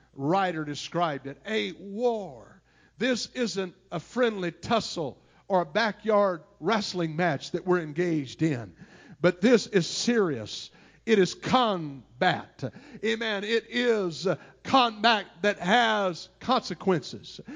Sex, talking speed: male, 115 wpm